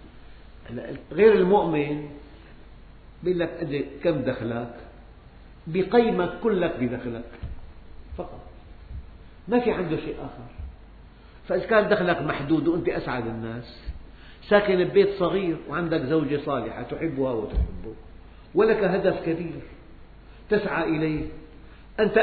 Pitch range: 120-175 Hz